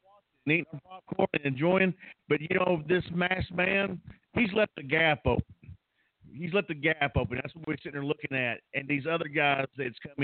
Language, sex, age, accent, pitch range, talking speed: English, male, 50-69, American, 130-160 Hz, 200 wpm